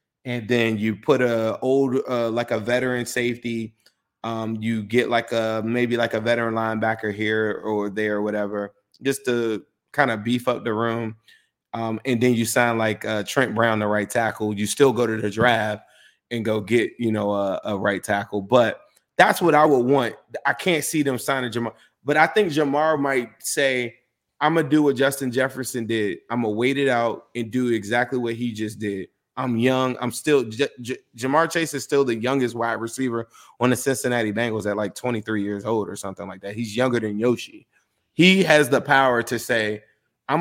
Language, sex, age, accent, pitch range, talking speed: English, male, 20-39, American, 110-135 Hz, 210 wpm